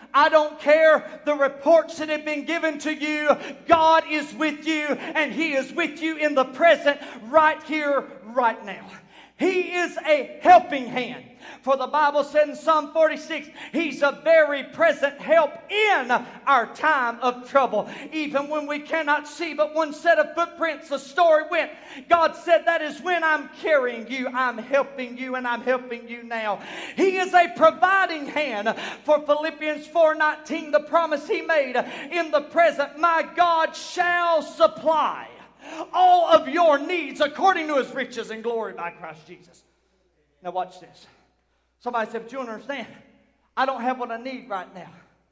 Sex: male